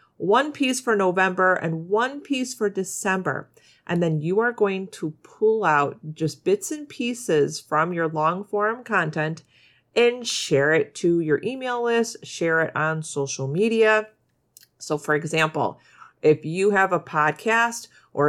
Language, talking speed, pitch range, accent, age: English, 150 wpm, 160-215 Hz, American, 40-59